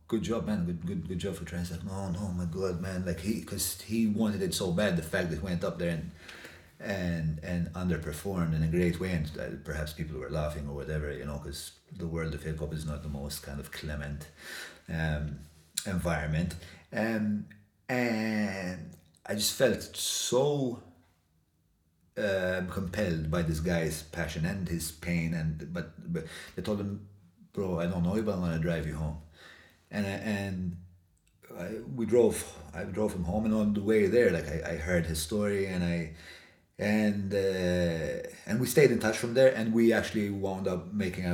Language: English